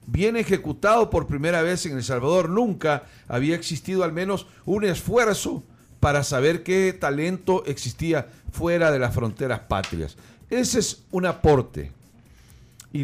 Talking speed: 140 wpm